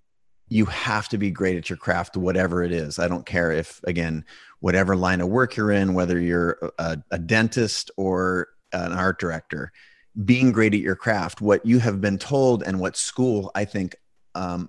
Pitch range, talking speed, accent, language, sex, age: 95-110 Hz, 190 wpm, American, English, male, 30-49